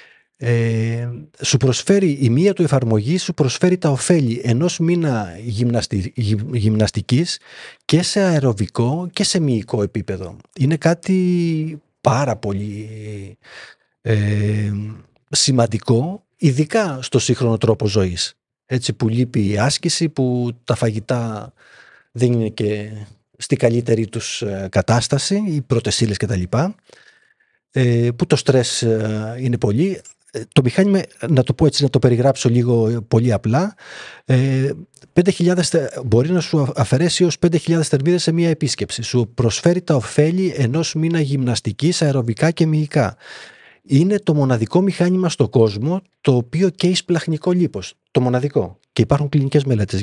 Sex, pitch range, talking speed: male, 115-165 Hz, 125 wpm